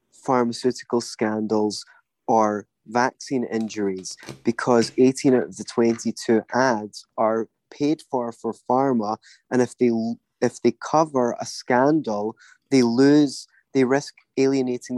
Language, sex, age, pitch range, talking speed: English, male, 20-39, 110-130 Hz, 120 wpm